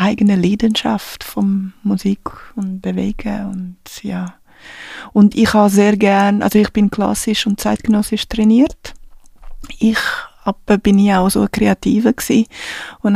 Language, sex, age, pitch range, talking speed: German, female, 20-39, 190-210 Hz, 130 wpm